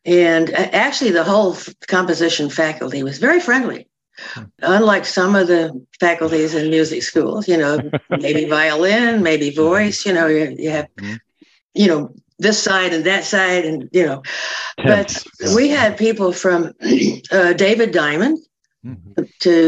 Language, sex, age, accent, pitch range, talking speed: English, female, 60-79, American, 160-210 Hz, 140 wpm